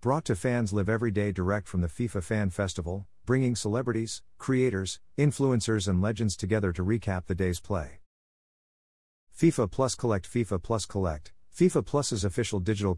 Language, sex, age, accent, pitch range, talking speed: English, male, 50-69, American, 90-115 Hz, 155 wpm